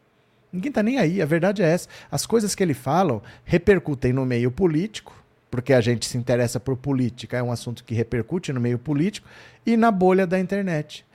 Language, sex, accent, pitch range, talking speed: Portuguese, male, Brazilian, 130-200 Hz, 200 wpm